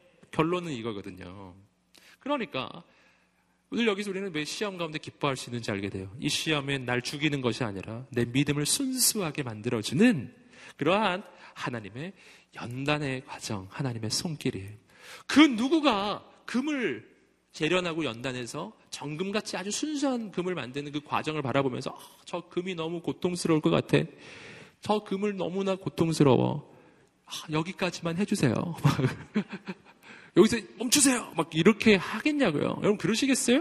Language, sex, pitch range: Korean, male, 125-195 Hz